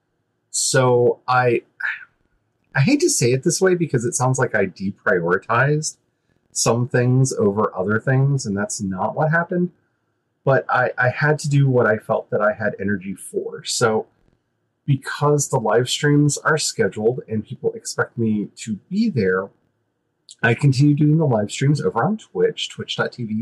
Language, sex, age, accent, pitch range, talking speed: English, male, 30-49, American, 110-150 Hz, 160 wpm